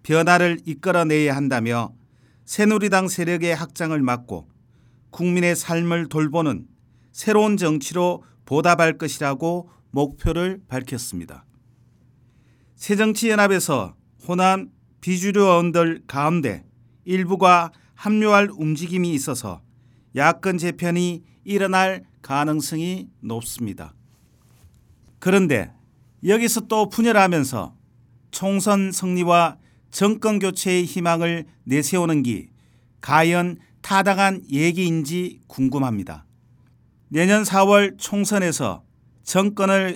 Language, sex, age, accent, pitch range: Korean, male, 40-59, native, 125-185 Hz